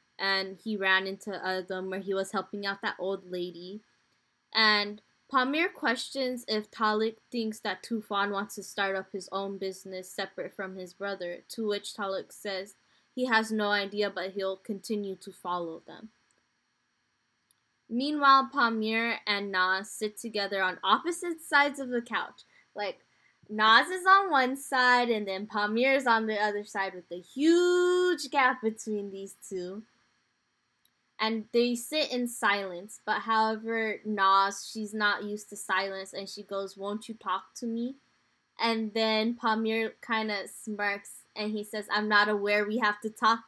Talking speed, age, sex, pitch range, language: 160 wpm, 10-29, female, 195-230 Hz, English